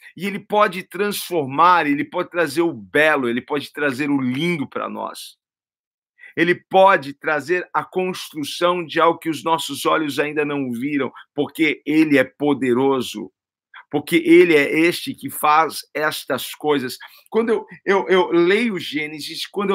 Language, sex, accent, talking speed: Portuguese, male, Brazilian, 150 wpm